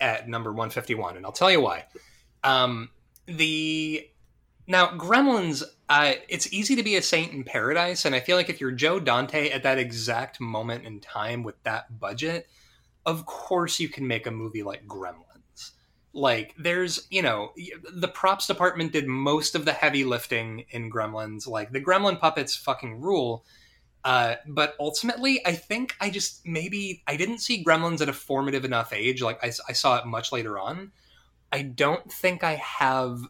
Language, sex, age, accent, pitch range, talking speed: English, male, 20-39, American, 115-170 Hz, 175 wpm